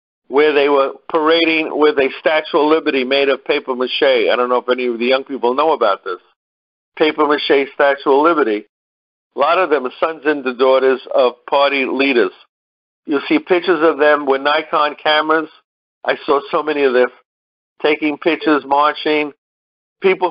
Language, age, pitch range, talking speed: English, 50-69, 130-165 Hz, 170 wpm